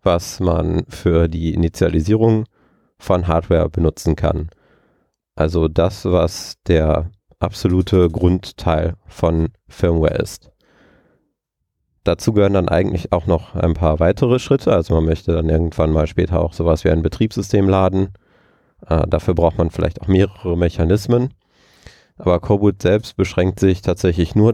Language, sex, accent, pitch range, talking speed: German, male, German, 85-100 Hz, 135 wpm